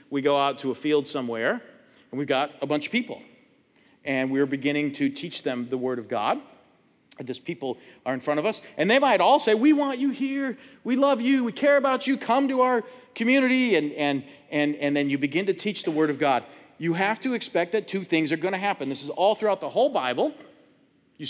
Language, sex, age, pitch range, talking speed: English, male, 40-59, 140-210 Hz, 235 wpm